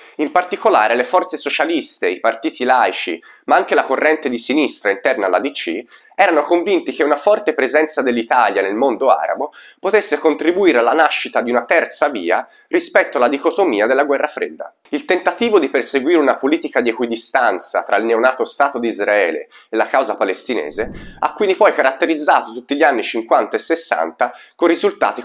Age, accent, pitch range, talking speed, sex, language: 30-49, native, 130-190 Hz, 165 wpm, male, Italian